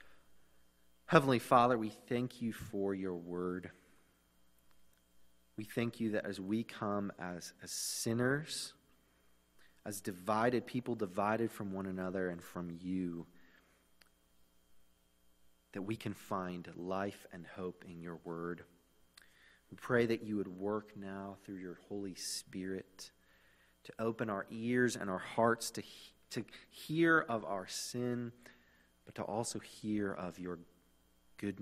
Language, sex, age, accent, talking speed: English, male, 30-49, American, 135 wpm